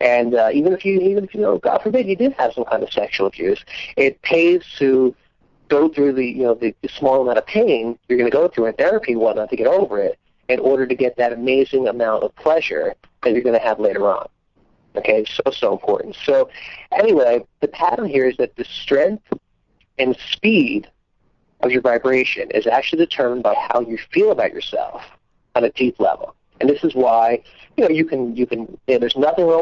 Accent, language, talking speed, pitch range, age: American, English, 220 wpm, 120-170 Hz, 40-59